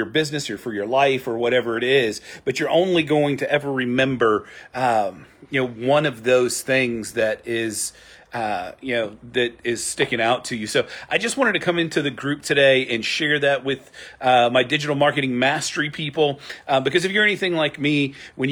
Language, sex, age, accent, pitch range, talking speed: English, male, 40-59, American, 120-145 Hz, 200 wpm